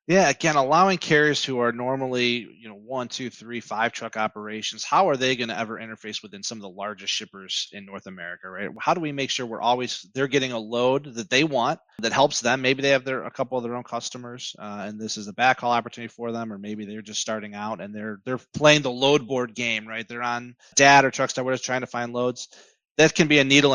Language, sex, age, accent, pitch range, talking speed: English, male, 30-49, American, 110-130 Hz, 250 wpm